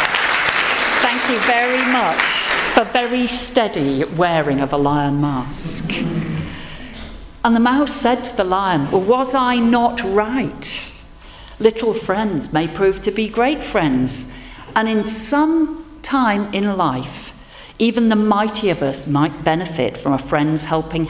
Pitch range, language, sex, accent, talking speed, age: 145-230 Hz, English, female, British, 140 wpm, 50-69